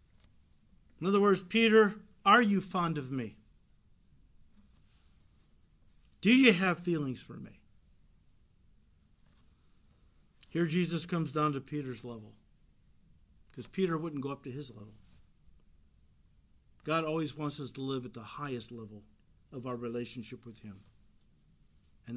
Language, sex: English, male